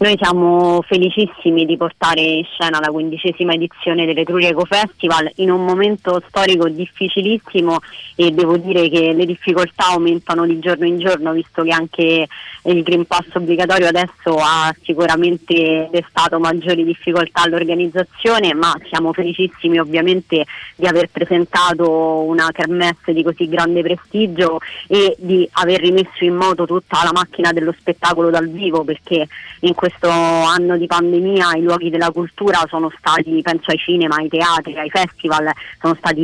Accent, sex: native, female